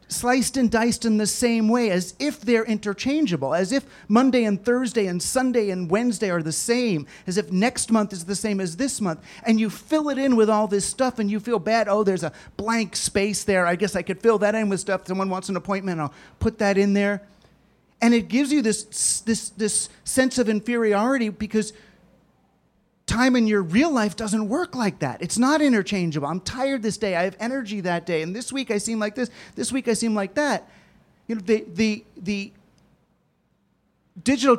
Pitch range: 185-230 Hz